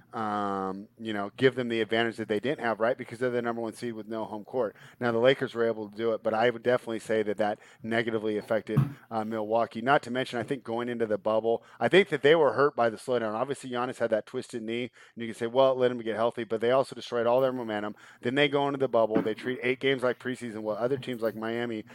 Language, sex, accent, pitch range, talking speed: English, male, American, 110-125 Hz, 270 wpm